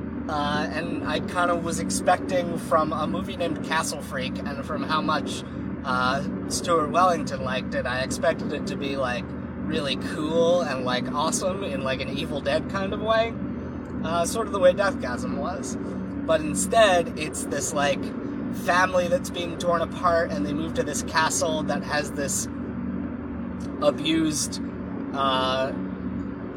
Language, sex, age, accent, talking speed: English, male, 30-49, American, 160 wpm